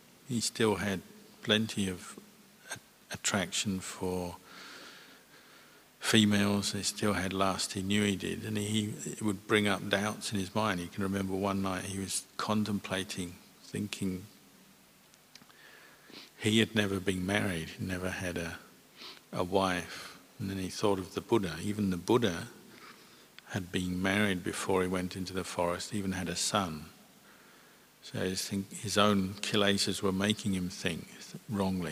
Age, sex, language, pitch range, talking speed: 50-69, male, English, 95-105 Hz, 150 wpm